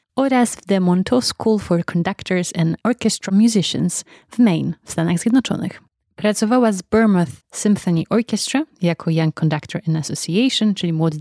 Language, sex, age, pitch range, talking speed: Polish, female, 20-39, 175-225 Hz, 145 wpm